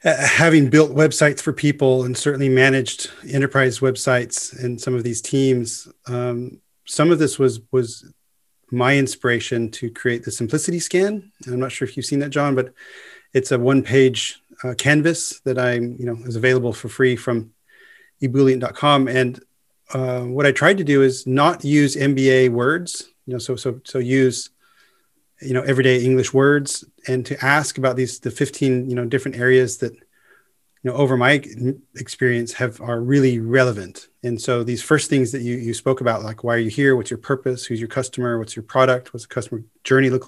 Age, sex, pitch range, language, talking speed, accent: 30-49, male, 125-140 Hz, English, 190 wpm, American